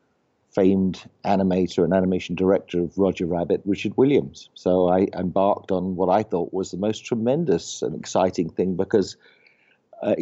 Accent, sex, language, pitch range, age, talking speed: British, male, English, 90-105 Hz, 50-69, 155 wpm